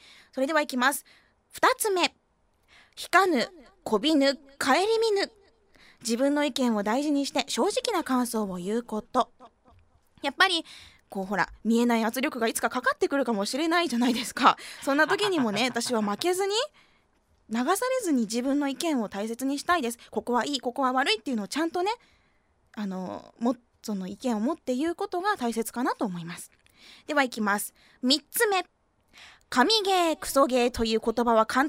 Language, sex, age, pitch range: Japanese, female, 20-39, 230-350 Hz